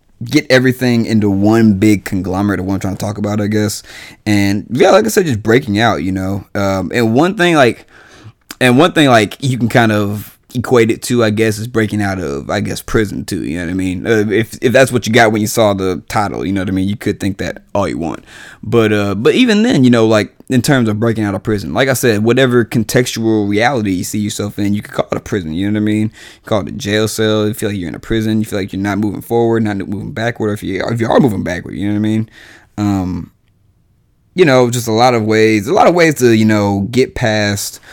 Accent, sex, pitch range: American, male, 100-120 Hz